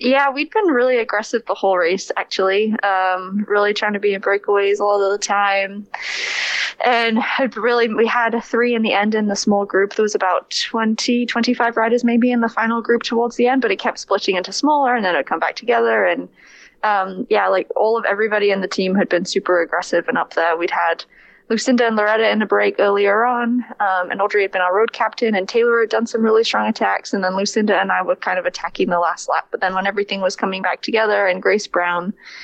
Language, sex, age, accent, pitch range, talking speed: English, female, 10-29, American, 190-230 Hz, 235 wpm